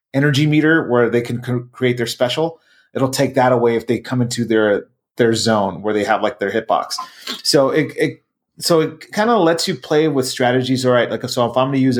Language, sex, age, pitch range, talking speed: English, male, 30-49, 120-150 Hz, 230 wpm